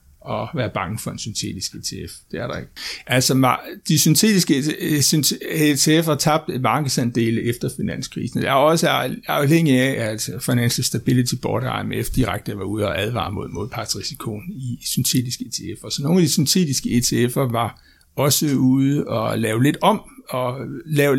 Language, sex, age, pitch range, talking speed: Danish, male, 60-79, 120-155 Hz, 165 wpm